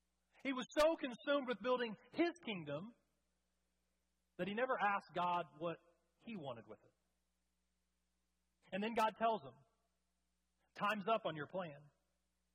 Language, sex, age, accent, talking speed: English, male, 40-59, American, 135 wpm